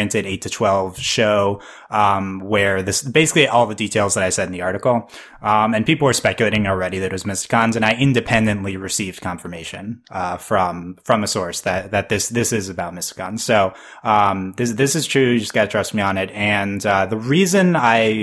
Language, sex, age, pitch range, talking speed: English, male, 20-39, 95-120 Hz, 205 wpm